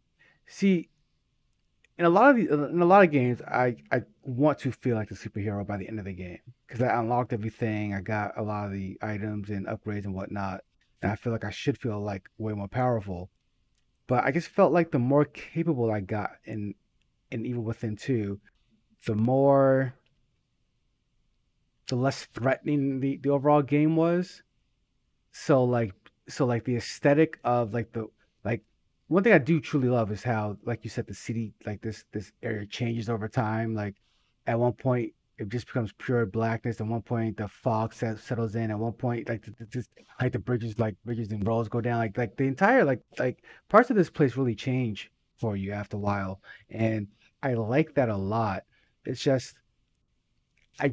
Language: English